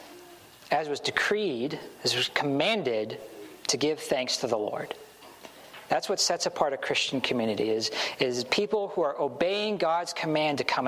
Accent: American